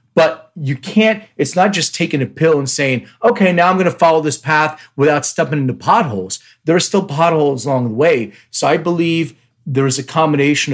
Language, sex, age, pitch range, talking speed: English, male, 40-59, 125-160 Hz, 205 wpm